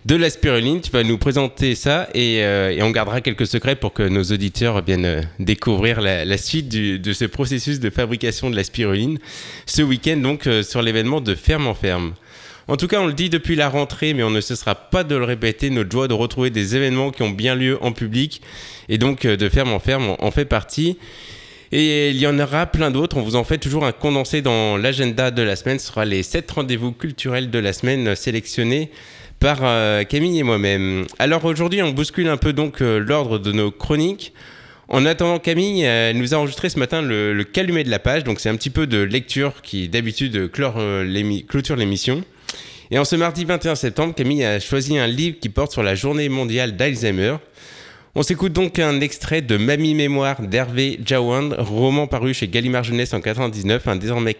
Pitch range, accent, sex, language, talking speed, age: 110-145 Hz, French, male, French, 210 wpm, 20-39